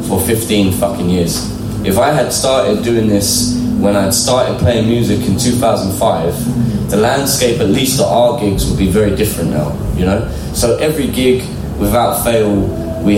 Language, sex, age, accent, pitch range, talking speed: French, male, 20-39, British, 95-115 Hz, 170 wpm